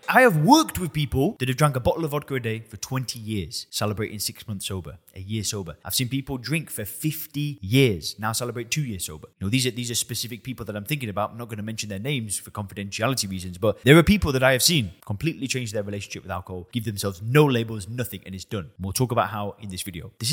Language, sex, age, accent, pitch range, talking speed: English, male, 20-39, British, 105-140 Hz, 260 wpm